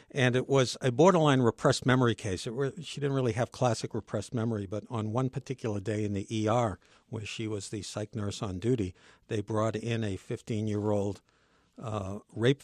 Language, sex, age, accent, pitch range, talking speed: English, male, 60-79, American, 105-130 Hz, 175 wpm